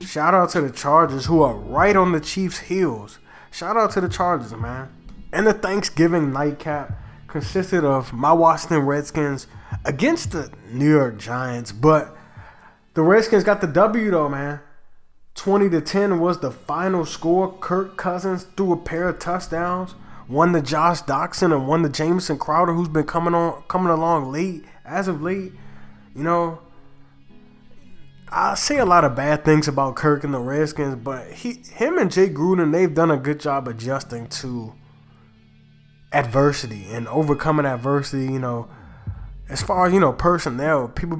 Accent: American